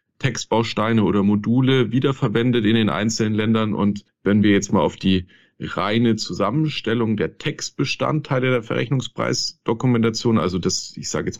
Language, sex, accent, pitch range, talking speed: German, male, German, 105-125 Hz, 135 wpm